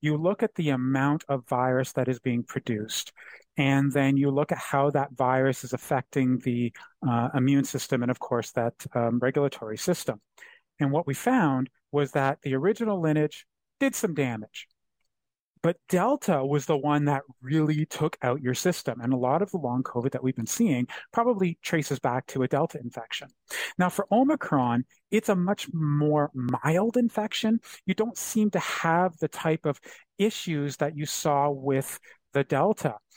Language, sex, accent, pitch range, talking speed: English, male, American, 135-180 Hz, 175 wpm